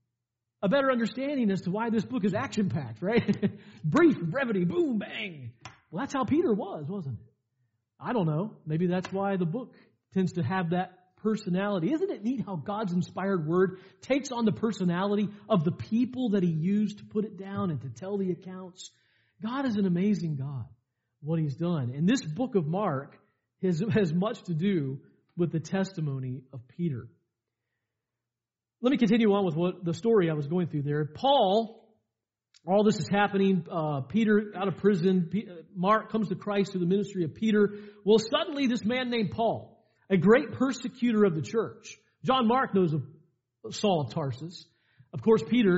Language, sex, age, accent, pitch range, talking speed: English, male, 40-59, American, 150-215 Hz, 180 wpm